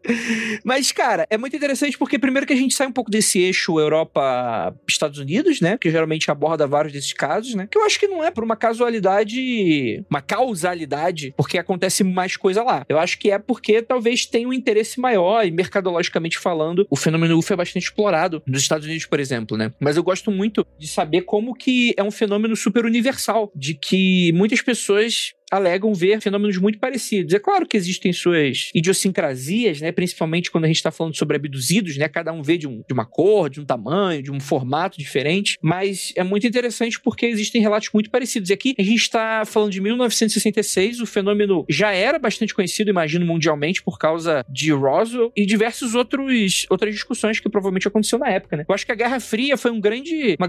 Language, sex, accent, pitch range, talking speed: Portuguese, male, Brazilian, 170-230 Hz, 200 wpm